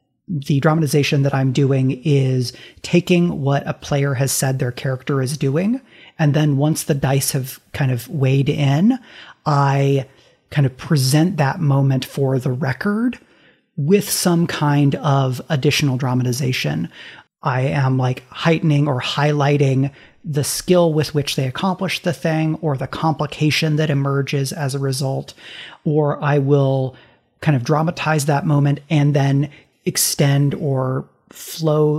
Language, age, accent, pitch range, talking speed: English, 40-59, American, 135-155 Hz, 145 wpm